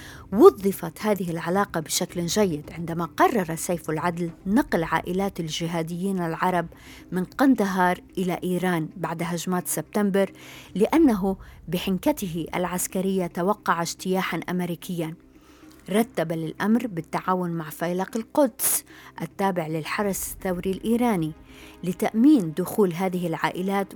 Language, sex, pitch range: Arabic, female, 170-200 Hz